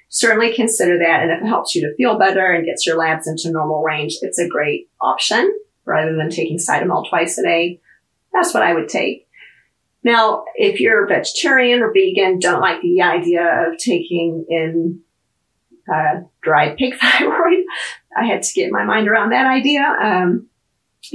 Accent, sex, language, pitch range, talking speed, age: American, female, English, 165-255 Hz, 175 wpm, 40-59